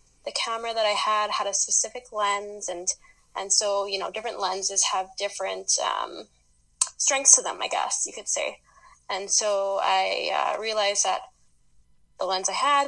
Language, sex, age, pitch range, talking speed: English, female, 10-29, 195-225 Hz, 170 wpm